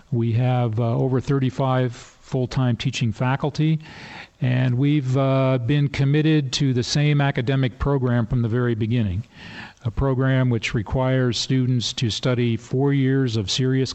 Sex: male